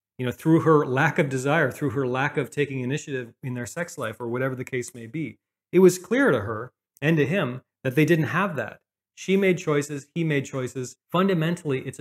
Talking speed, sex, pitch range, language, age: 220 wpm, male, 130-160 Hz, English, 30-49